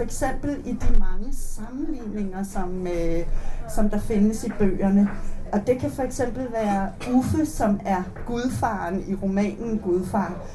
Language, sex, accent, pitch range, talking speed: Danish, female, native, 185-220 Hz, 150 wpm